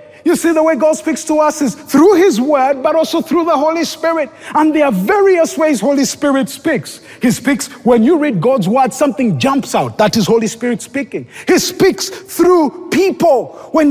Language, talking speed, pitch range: English, 200 wpm, 200-295 Hz